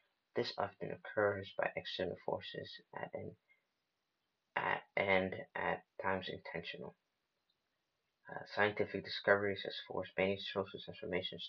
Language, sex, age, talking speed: English, male, 30-49, 110 wpm